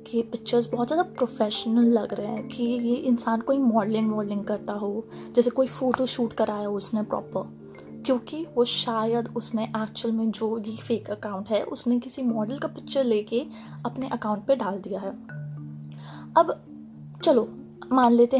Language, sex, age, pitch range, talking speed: Hindi, female, 20-39, 210-245 Hz, 165 wpm